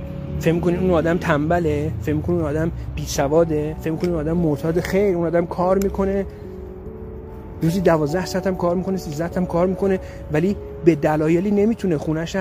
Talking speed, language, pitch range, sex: 180 wpm, Persian, 165-220 Hz, male